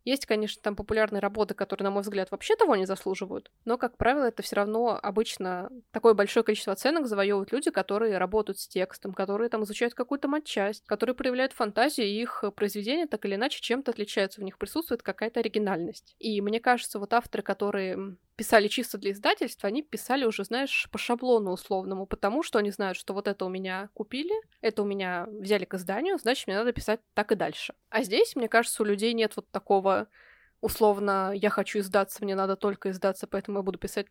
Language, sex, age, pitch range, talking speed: Russian, female, 20-39, 200-240 Hz, 195 wpm